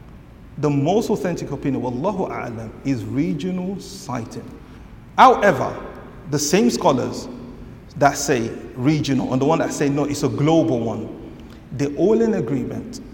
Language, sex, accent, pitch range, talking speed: English, male, Nigerian, 135-195 Hz, 135 wpm